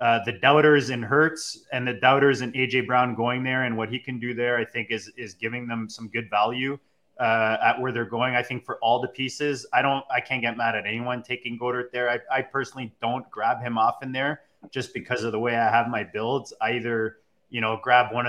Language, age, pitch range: English, 20-39, 110-125 Hz